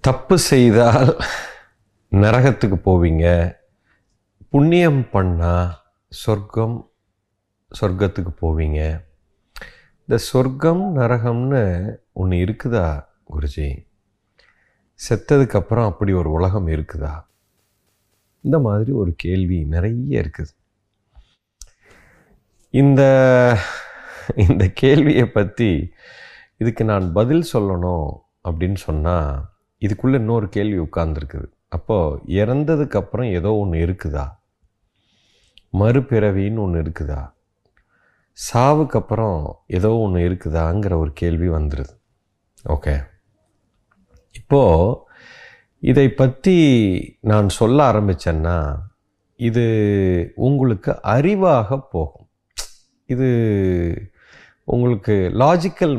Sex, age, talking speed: male, 30-49, 75 wpm